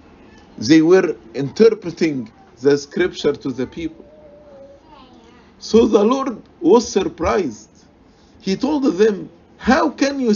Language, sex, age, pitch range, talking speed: English, male, 50-69, 180-250 Hz, 110 wpm